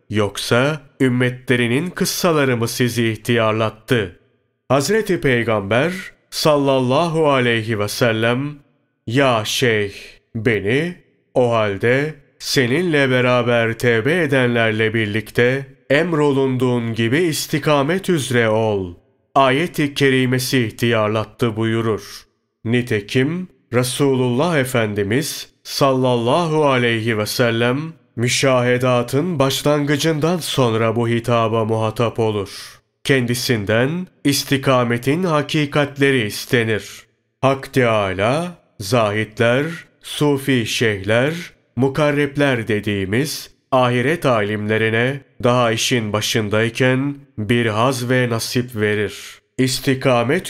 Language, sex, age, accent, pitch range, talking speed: Turkish, male, 30-49, native, 115-140 Hz, 80 wpm